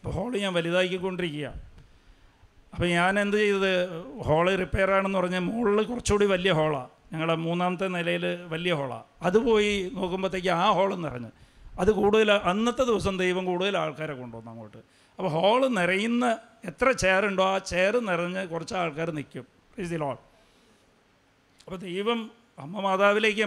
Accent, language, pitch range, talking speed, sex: Indian, English, 165-200 Hz, 130 wpm, male